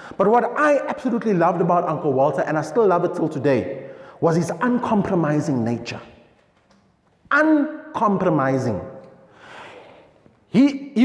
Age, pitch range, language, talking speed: 30-49, 155-240 Hz, English, 120 wpm